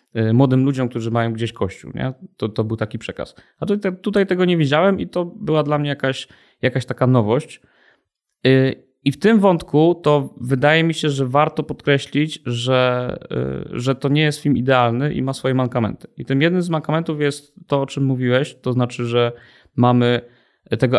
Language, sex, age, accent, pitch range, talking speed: Polish, male, 20-39, native, 120-155 Hz, 175 wpm